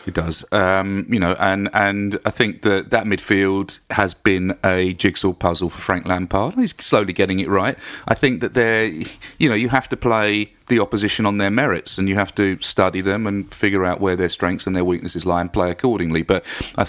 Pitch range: 95-120 Hz